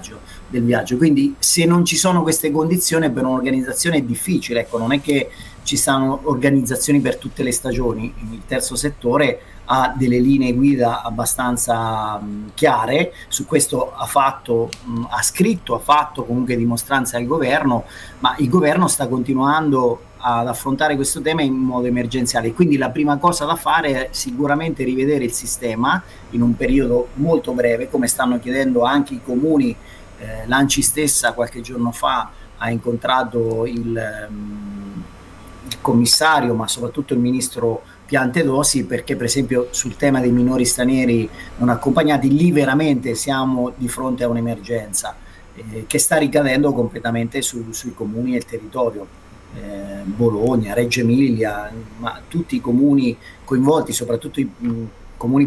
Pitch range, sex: 115-140 Hz, male